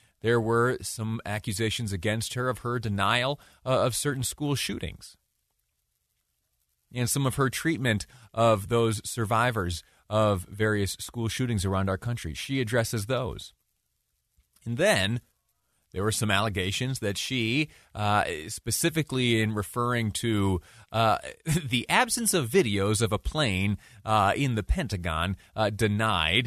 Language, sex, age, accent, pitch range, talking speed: English, male, 30-49, American, 95-120 Hz, 130 wpm